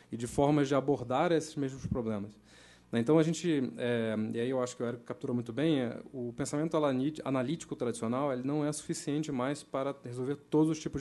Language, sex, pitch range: Portuguese, male, 120-155 Hz